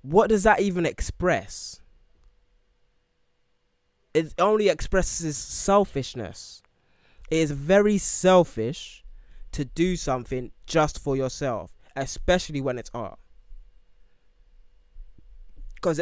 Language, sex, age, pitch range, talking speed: English, male, 20-39, 105-160 Hz, 90 wpm